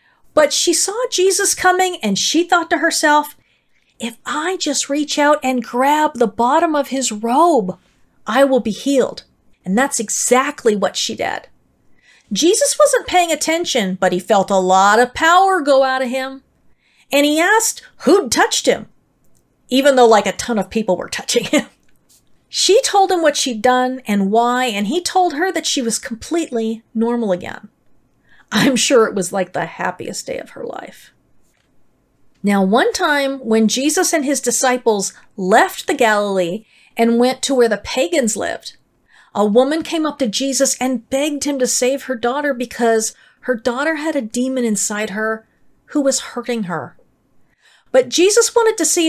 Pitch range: 225-305 Hz